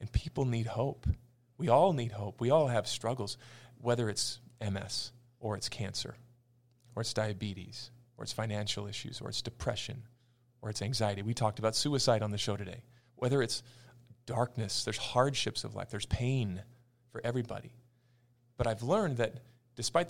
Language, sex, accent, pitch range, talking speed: English, male, American, 110-125 Hz, 165 wpm